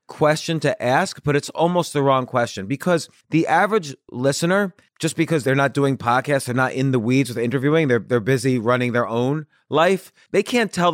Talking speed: 195 wpm